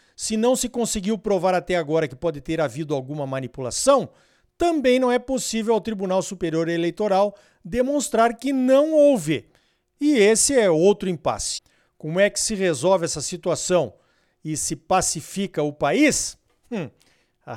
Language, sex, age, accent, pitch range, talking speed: Portuguese, male, 50-69, Brazilian, 155-215 Hz, 150 wpm